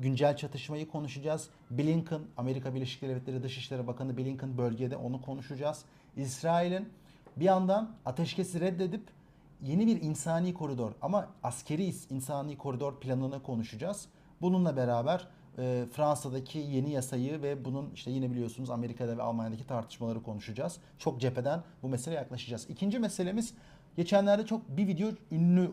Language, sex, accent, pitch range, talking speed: Turkish, male, native, 130-165 Hz, 130 wpm